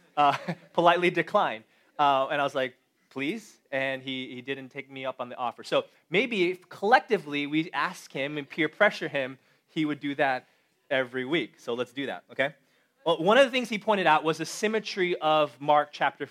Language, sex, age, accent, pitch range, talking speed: English, male, 20-39, American, 140-175 Hz, 200 wpm